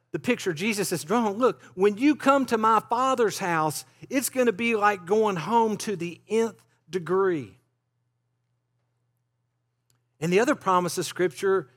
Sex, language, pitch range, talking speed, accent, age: male, English, 130-210 Hz, 160 wpm, American, 50-69